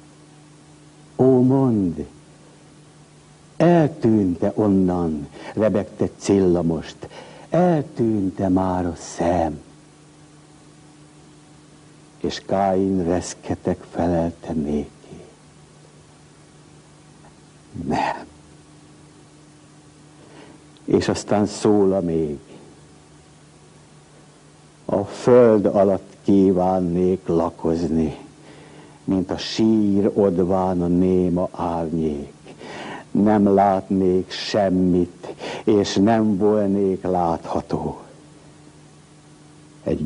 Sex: male